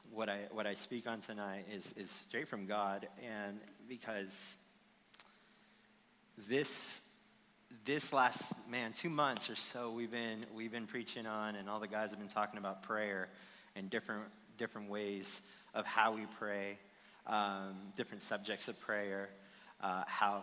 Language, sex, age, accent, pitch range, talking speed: English, male, 30-49, American, 100-115 Hz, 155 wpm